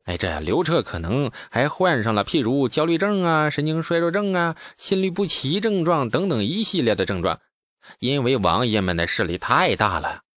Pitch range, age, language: 120-185 Hz, 20-39, Chinese